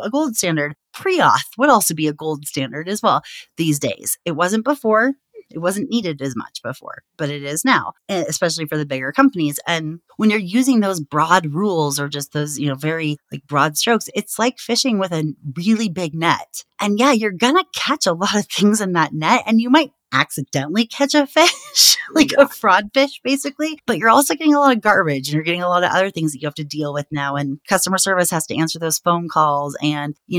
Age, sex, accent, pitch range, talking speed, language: 30-49, female, American, 150-205 Hz, 225 wpm, English